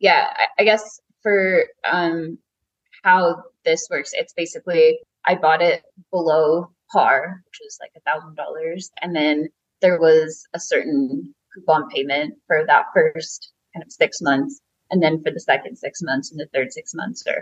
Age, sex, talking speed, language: 20-39, female, 165 wpm, English